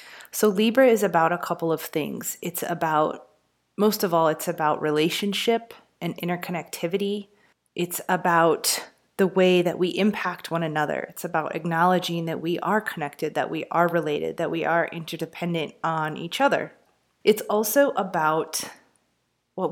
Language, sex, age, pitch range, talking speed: English, female, 30-49, 165-200 Hz, 150 wpm